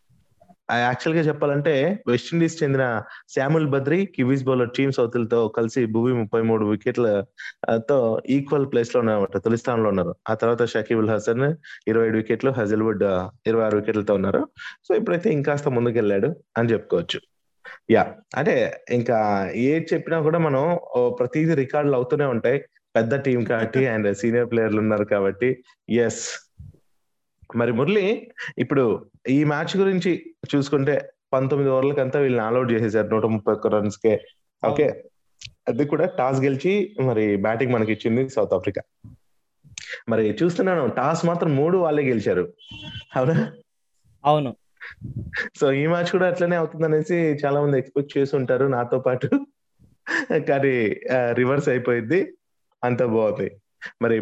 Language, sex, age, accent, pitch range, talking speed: Telugu, male, 20-39, native, 115-155 Hz, 130 wpm